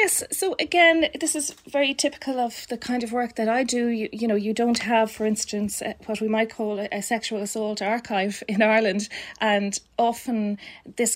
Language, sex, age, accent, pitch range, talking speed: English, female, 30-49, Irish, 205-235 Hz, 195 wpm